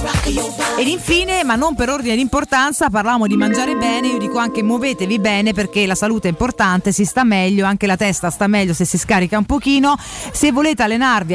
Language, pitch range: Italian, 195-255 Hz